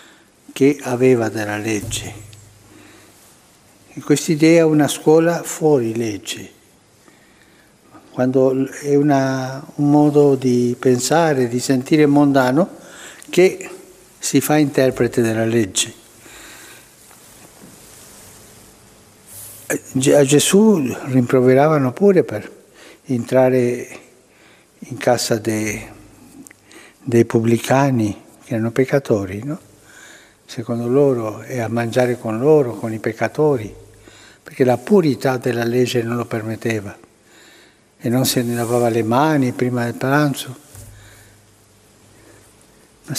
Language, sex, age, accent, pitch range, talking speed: Italian, male, 60-79, native, 110-145 Hz, 100 wpm